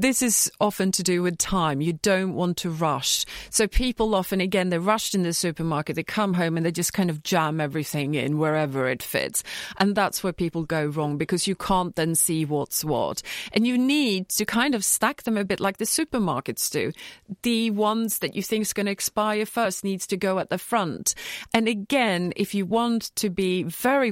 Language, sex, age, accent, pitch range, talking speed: English, female, 40-59, British, 170-220 Hz, 215 wpm